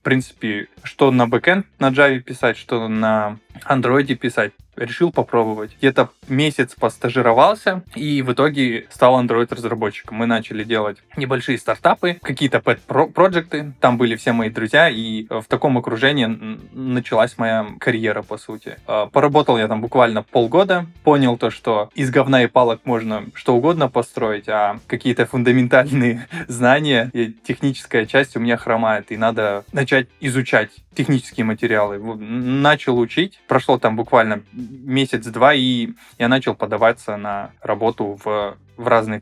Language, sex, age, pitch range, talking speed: Russian, male, 20-39, 110-130 Hz, 140 wpm